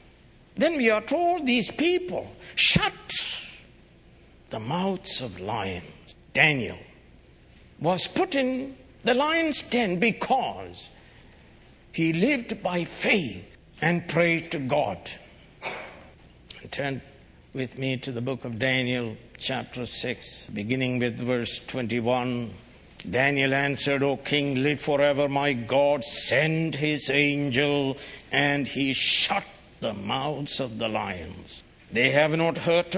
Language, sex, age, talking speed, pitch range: English, male, 60-79, 115 wpm, 125-160 Hz